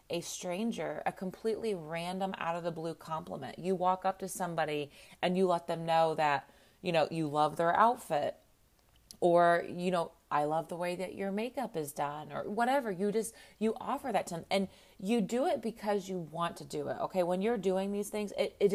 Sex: female